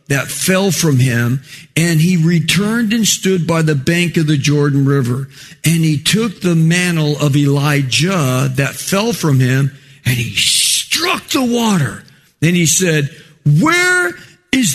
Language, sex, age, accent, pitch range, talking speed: English, male, 50-69, American, 140-215 Hz, 150 wpm